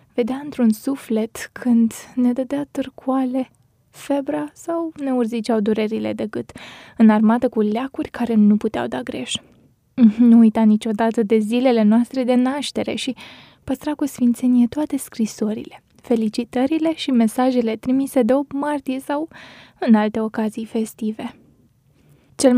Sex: female